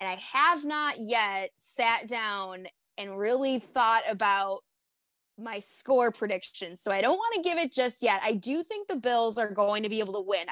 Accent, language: American, English